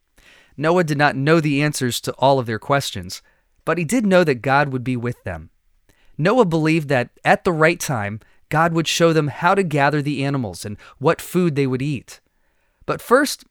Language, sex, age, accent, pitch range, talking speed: English, male, 30-49, American, 125-170 Hz, 200 wpm